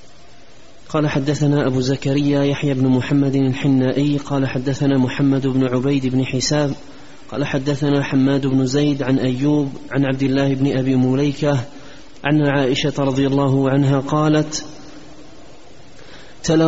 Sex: male